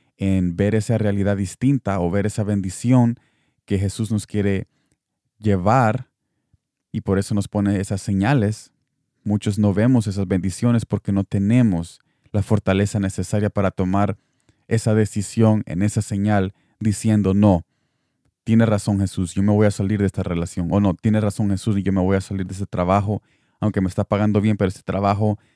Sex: male